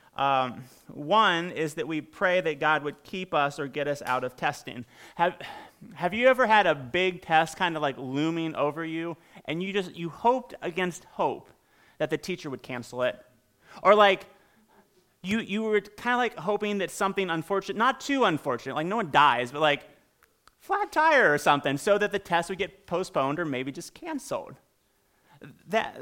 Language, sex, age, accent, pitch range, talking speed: English, male, 30-49, American, 150-210 Hz, 185 wpm